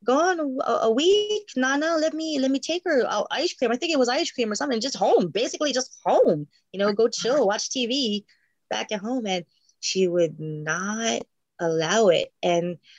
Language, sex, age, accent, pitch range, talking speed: English, female, 20-39, American, 165-215 Hz, 200 wpm